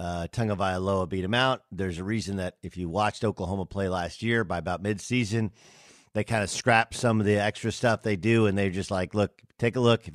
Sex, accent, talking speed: male, American, 235 wpm